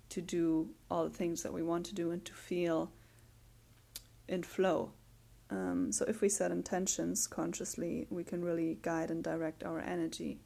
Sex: female